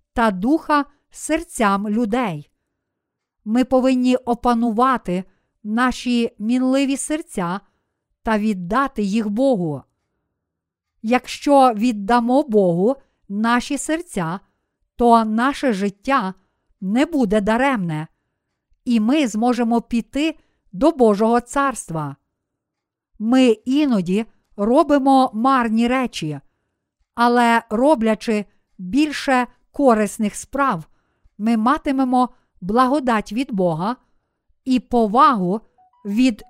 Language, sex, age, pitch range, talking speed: Ukrainian, female, 50-69, 210-265 Hz, 80 wpm